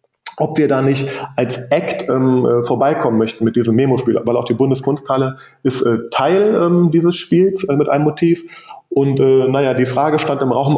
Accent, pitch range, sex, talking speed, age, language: German, 130-160 Hz, male, 190 wpm, 30-49, German